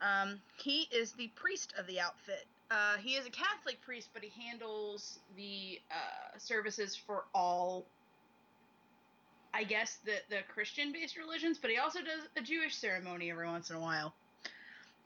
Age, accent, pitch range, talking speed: 20-39, American, 180-255 Hz, 165 wpm